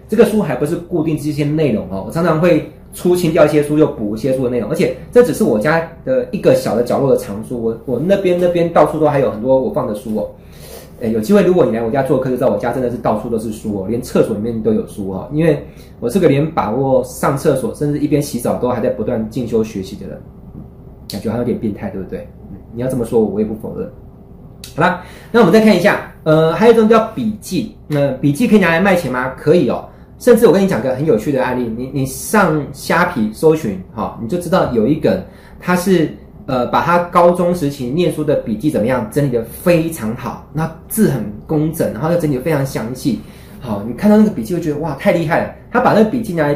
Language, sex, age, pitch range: Chinese, male, 20-39, 125-180 Hz